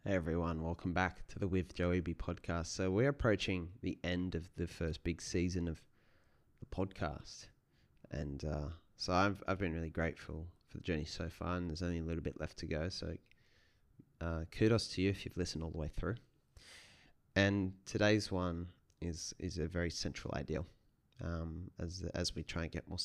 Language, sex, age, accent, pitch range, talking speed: English, male, 20-39, Australian, 80-100 Hz, 195 wpm